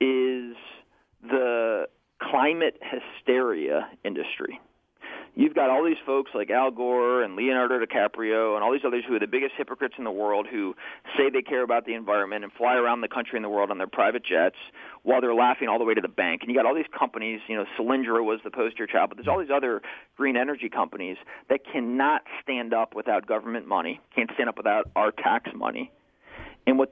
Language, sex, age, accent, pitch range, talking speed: English, male, 40-59, American, 120-170 Hz, 205 wpm